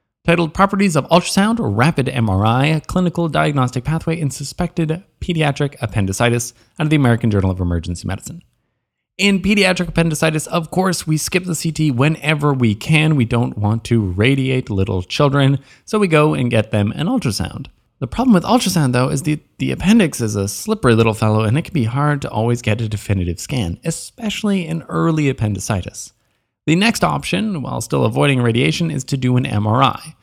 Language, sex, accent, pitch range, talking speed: English, male, American, 115-165 Hz, 175 wpm